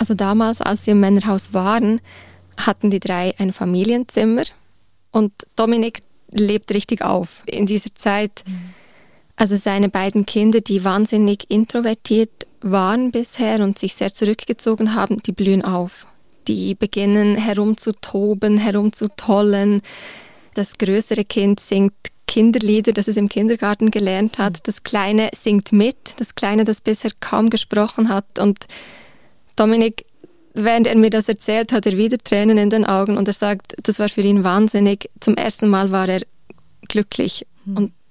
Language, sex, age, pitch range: German, female, 20-39, 195-220 Hz